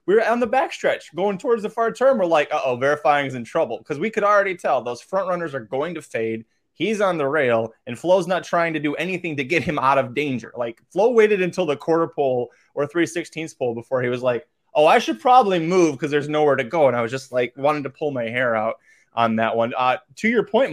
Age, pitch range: 20-39, 130-190 Hz